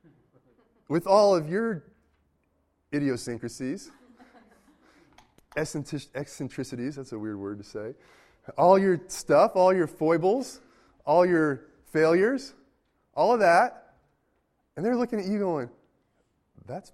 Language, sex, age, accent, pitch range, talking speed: English, male, 20-39, American, 115-160 Hz, 110 wpm